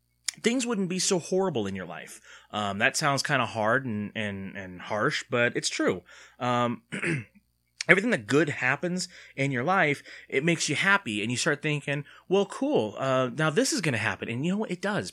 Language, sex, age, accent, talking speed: English, male, 30-49, American, 205 wpm